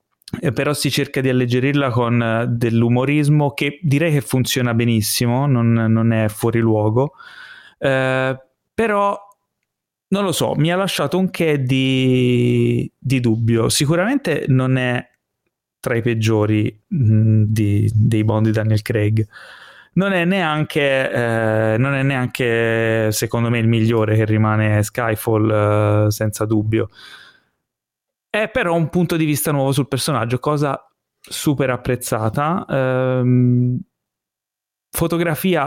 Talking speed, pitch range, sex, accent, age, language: 125 wpm, 115-140 Hz, male, native, 30-49, Italian